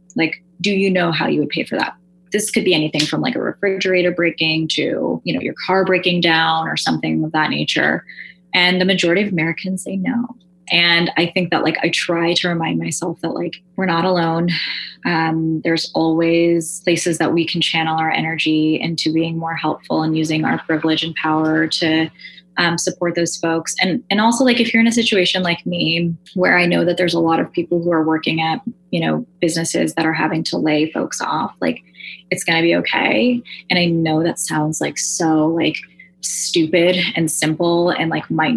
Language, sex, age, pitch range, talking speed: English, female, 20-39, 160-180 Hz, 205 wpm